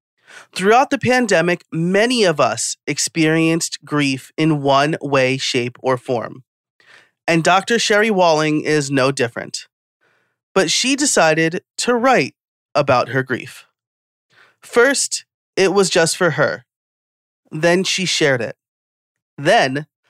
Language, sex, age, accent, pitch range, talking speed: English, male, 30-49, American, 135-185 Hz, 120 wpm